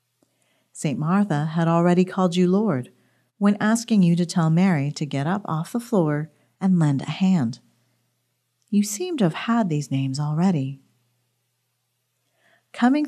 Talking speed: 145 wpm